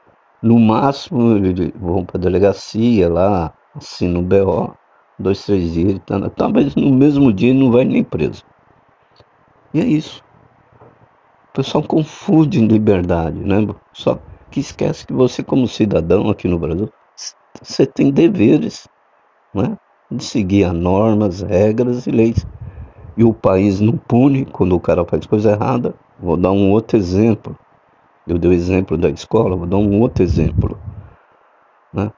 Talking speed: 155 wpm